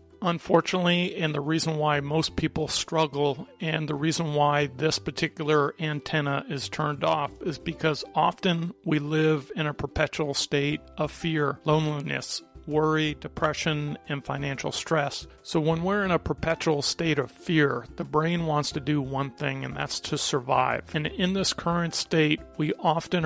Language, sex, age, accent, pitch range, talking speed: English, male, 40-59, American, 145-165 Hz, 160 wpm